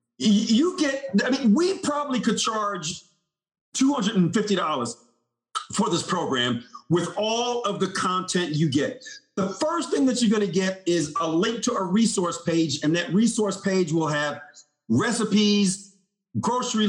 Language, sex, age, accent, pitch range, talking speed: English, male, 50-69, American, 170-220 Hz, 150 wpm